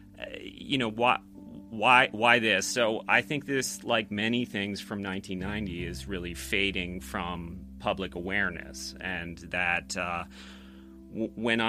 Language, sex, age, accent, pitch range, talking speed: English, male, 30-49, American, 90-105 Hz, 130 wpm